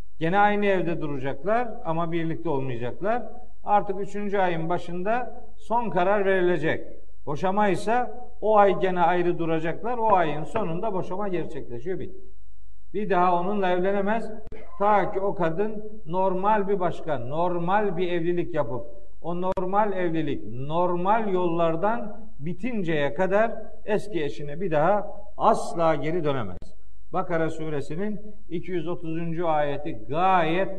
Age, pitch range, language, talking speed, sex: 50-69, 150-200 Hz, Turkish, 115 wpm, male